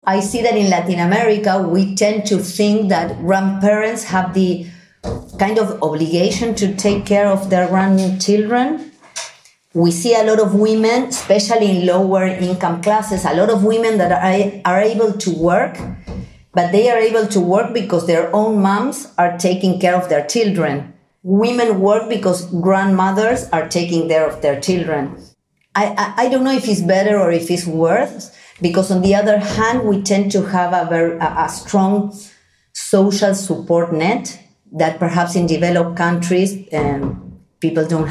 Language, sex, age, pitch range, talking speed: English, female, 50-69, 175-210 Hz, 165 wpm